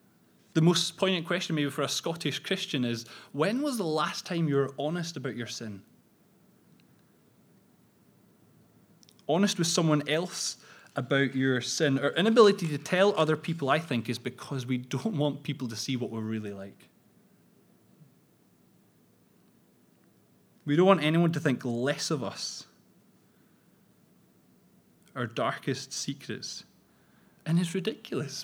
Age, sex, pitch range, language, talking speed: 20-39, male, 135-180 Hz, English, 135 wpm